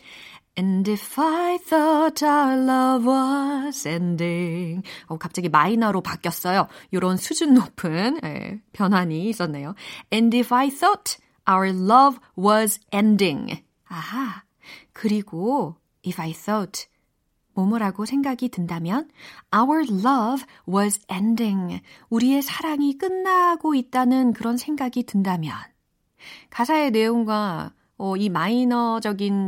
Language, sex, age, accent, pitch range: Korean, female, 40-59, native, 190-300 Hz